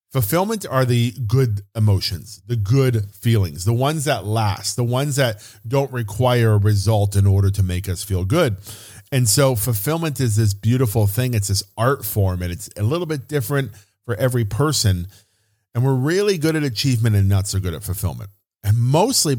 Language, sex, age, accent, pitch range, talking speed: English, male, 40-59, American, 105-135 Hz, 185 wpm